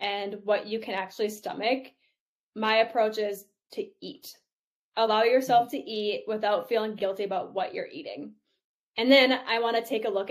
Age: 10-29